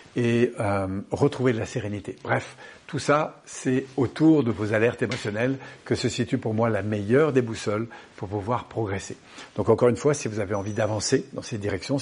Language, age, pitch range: French, 70-89, 110-130 Hz